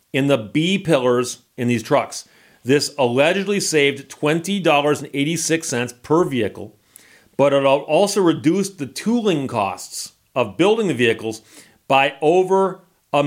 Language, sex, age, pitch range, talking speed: English, male, 40-59, 125-160 Hz, 120 wpm